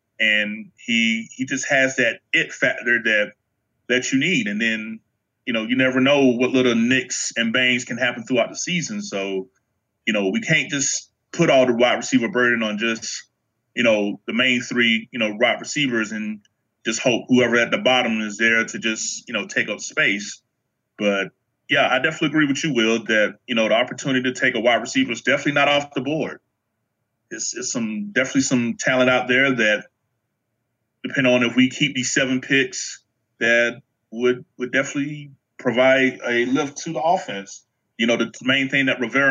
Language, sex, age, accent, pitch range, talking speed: English, male, 30-49, American, 115-135 Hz, 190 wpm